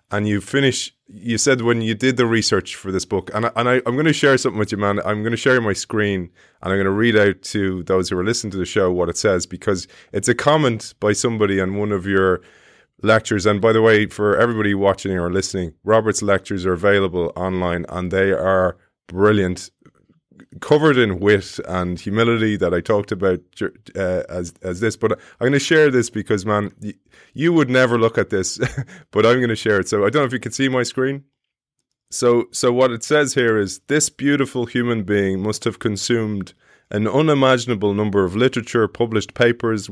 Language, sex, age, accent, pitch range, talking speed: English, male, 20-39, Irish, 95-120 Hz, 210 wpm